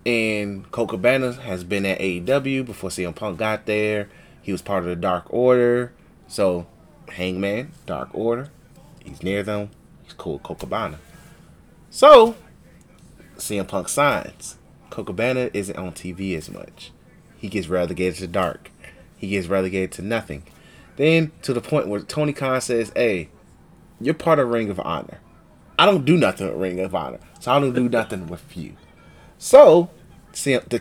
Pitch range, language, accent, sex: 100-130 Hz, English, American, male